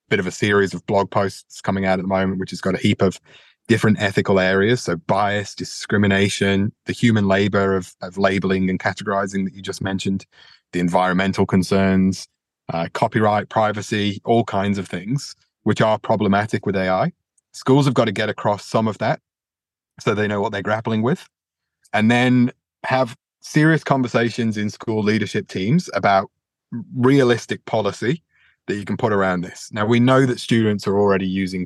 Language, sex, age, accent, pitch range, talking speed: English, male, 30-49, British, 95-115 Hz, 175 wpm